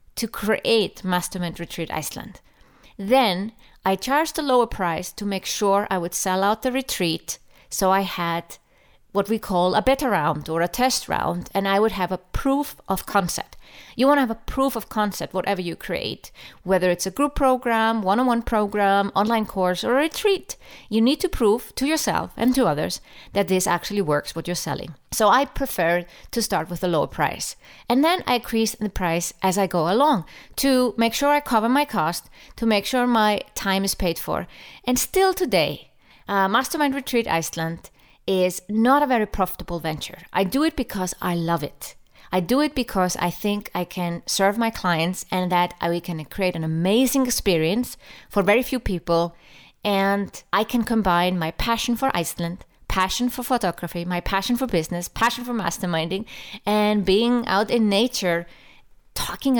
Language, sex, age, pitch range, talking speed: English, female, 30-49, 175-240 Hz, 180 wpm